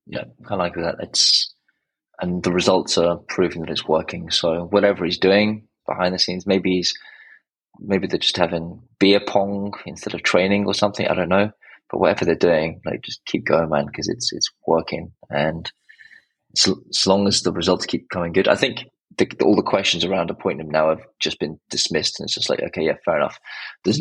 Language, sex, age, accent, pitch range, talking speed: English, male, 20-39, British, 85-100 Hz, 205 wpm